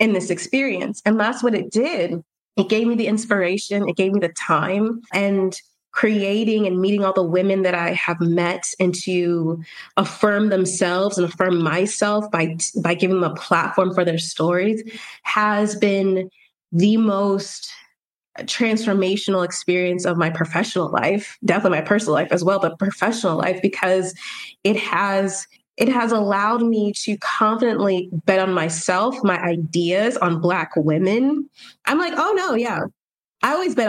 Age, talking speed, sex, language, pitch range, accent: 20-39, 160 wpm, female, English, 185-225 Hz, American